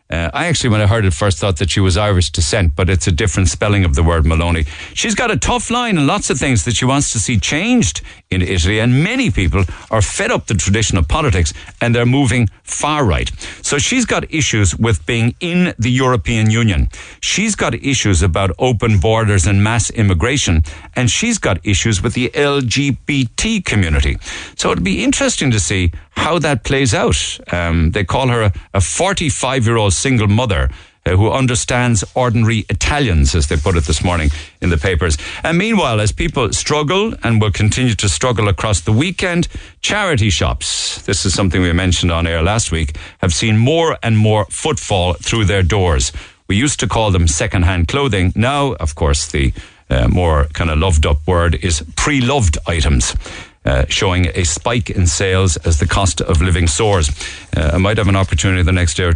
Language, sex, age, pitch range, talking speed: English, male, 60-79, 85-120 Hz, 190 wpm